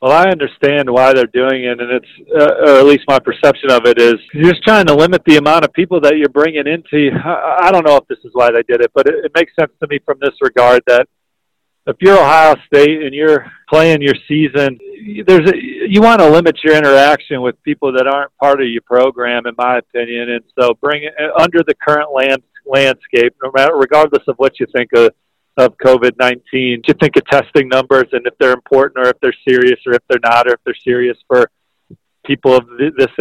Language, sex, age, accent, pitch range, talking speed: English, male, 40-59, American, 125-150 Hz, 225 wpm